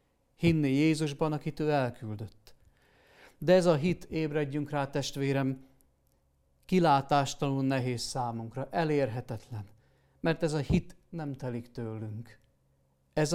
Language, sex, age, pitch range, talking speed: Hungarian, male, 50-69, 105-145 Hz, 110 wpm